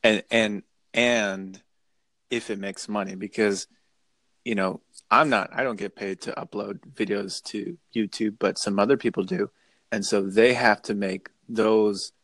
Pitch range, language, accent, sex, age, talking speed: 105-115 Hz, English, American, male, 30-49, 160 wpm